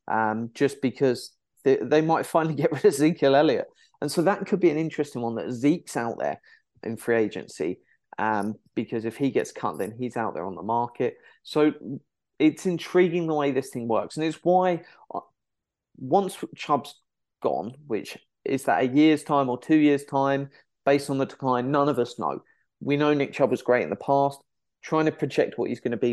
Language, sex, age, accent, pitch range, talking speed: English, male, 30-49, British, 120-160 Hz, 205 wpm